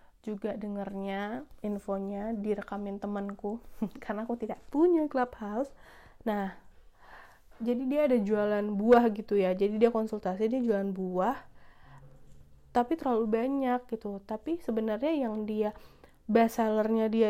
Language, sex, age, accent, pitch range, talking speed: Indonesian, female, 30-49, native, 210-245 Hz, 120 wpm